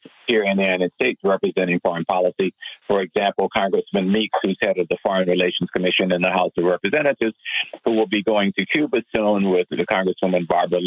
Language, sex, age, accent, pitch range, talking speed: English, male, 50-69, American, 90-110 Hz, 190 wpm